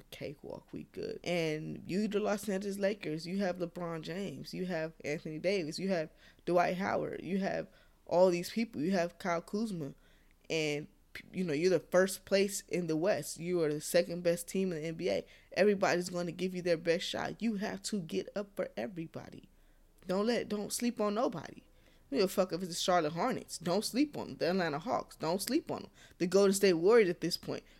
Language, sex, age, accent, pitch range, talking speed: English, female, 20-39, American, 150-185 Hz, 205 wpm